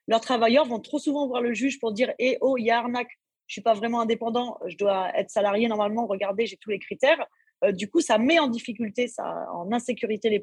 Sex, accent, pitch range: female, French, 215-275 Hz